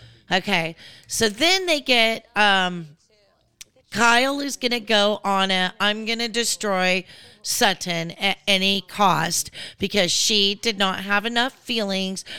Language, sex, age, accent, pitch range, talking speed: English, female, 40-59, American, 190-230 Hz, 125 wpm